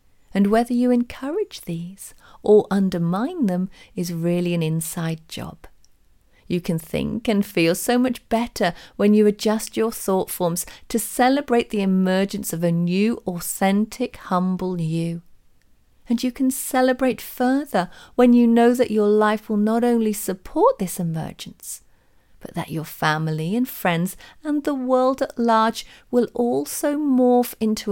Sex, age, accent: female, 40-59, British